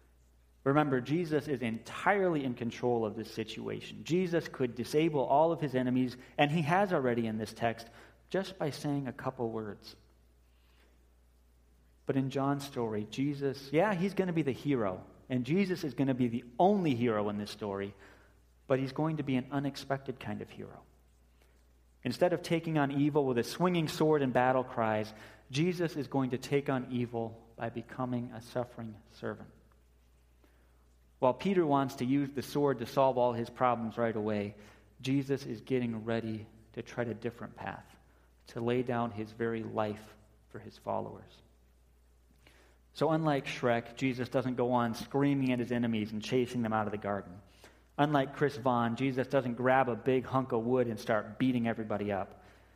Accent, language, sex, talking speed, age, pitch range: American, English, male, 175 wpm, 30-49, 105-135 Hz